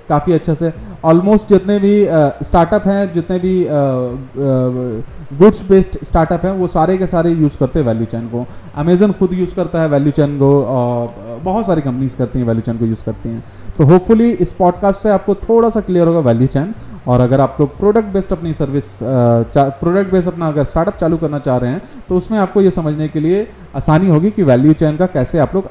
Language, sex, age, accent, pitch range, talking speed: Hindi, male, 30-49, native, 130-185 Hz, 210 wpm